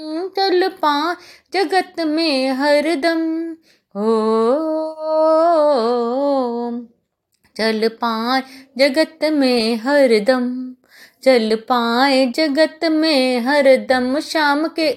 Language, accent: Hindi, native